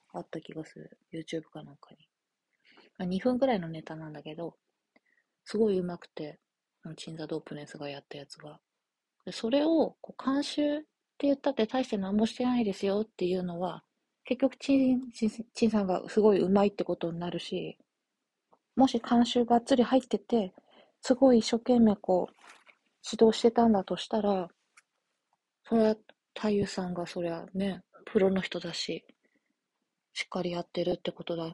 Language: Japanese